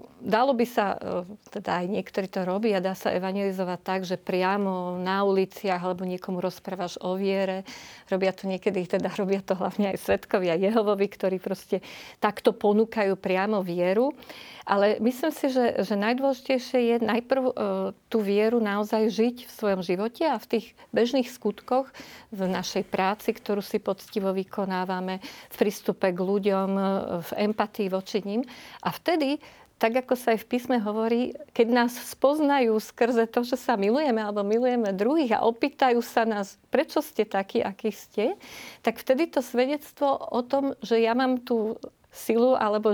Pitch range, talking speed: 195-245 Hz, 160 wpm